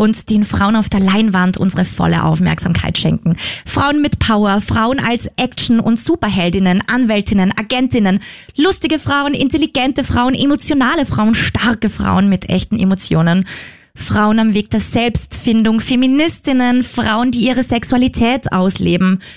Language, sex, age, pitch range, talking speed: German, female, 20-39, 195-250 Hz, 130 wpm